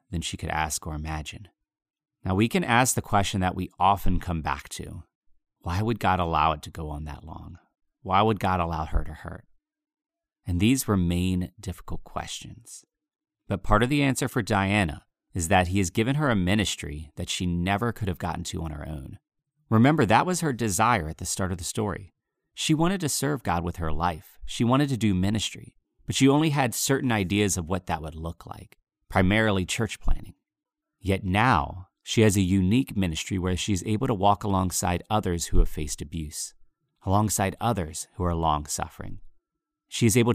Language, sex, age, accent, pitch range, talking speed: English, male, 30-49, American, 85-115 Hz, 195 wpm